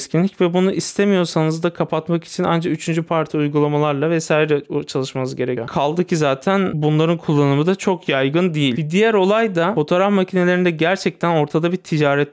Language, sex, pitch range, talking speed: Turkish, male, 155-195 Hz, 155 wpm